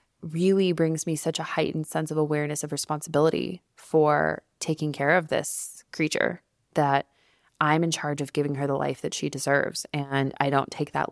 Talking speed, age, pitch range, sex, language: 185 wpm, 20-39, 145-165 Hz, female, English